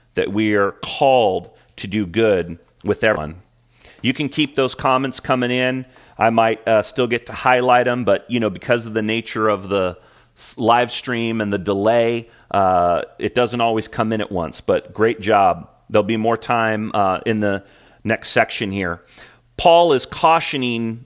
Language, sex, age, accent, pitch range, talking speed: English, male, 40-59, American, 105-135 Hz, 175 wpm